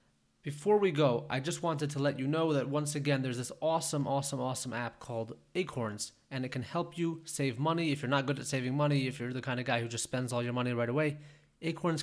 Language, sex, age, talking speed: English, male, 20-39, 250 wpm